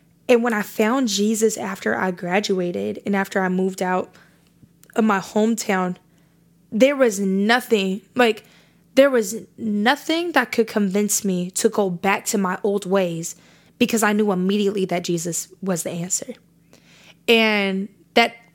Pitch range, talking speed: 185-230 Hz, 145 wpm